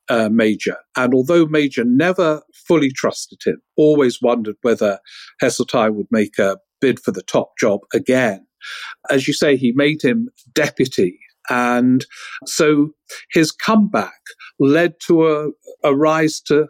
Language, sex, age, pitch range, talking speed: English, male, 50-69, 120-160 Hz, 140 wpm